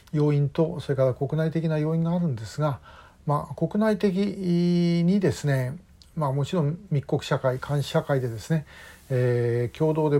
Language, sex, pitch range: Japanese, male, 130-160 Hz